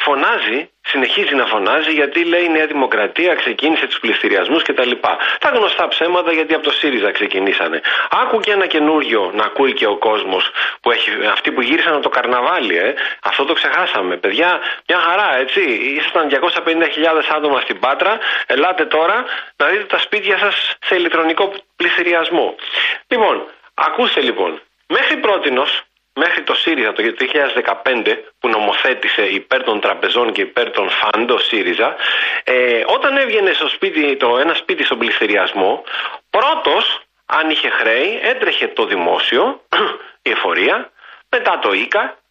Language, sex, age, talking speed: Greek, male, 40-59, 145 wpm